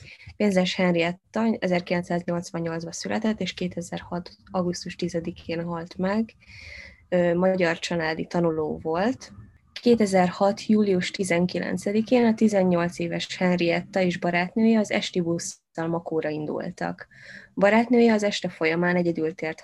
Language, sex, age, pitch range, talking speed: Hungarian, female, 20-39, 170-200 Hz, 105 wpm